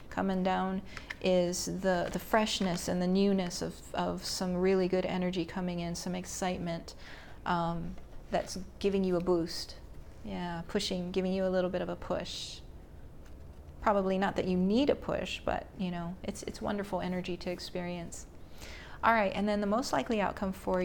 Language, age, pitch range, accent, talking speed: English, 40-59, 175-200 Hz, American, 175 wpm